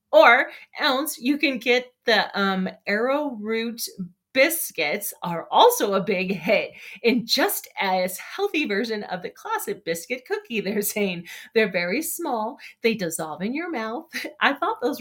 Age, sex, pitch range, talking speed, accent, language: 30-49, female, 195-300 Hz, 150 wpm, American, English